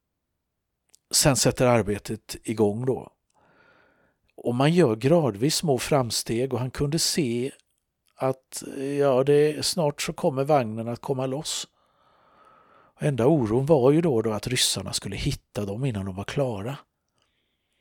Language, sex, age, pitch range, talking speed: Swedish, male, 50-69, 105-130 Hz, 140 wpm